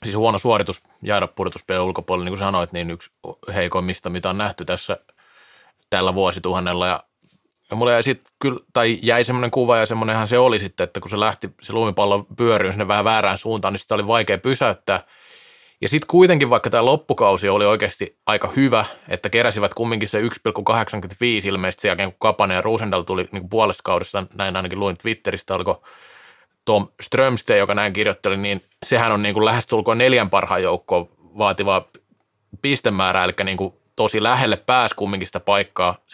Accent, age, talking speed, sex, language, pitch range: native, 30-49, 165 wpm, male, Finnish, 95-120 Hz